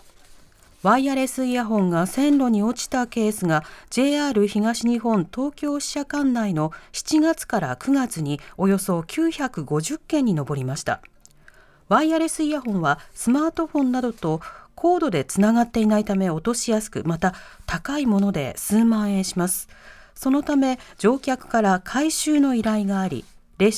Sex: female